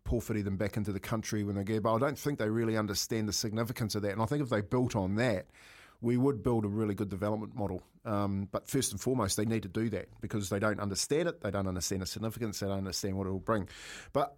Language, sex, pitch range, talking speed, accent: English, male, 105-120 Hz, 265 wpm, Australian